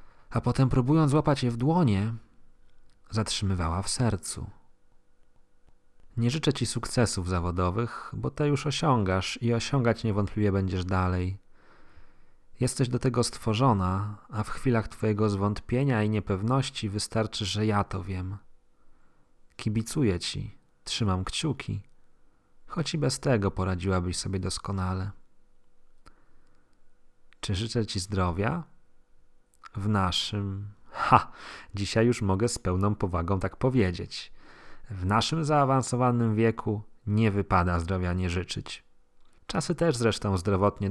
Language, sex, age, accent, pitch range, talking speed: Polish, male, 30-49, native, 95-120 Hz, 115 wpm